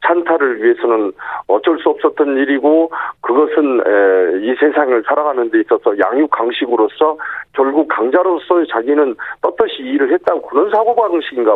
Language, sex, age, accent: Korean, male, 40-59, native